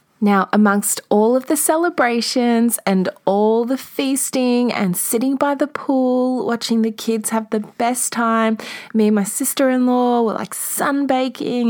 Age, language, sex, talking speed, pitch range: 20-39, English, female, 150 wpm, 190-255 Hz